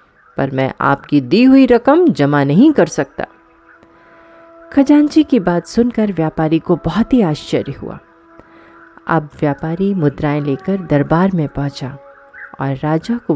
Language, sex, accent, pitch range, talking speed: Hindi, female, native, 145-210 Hz, 135 wpm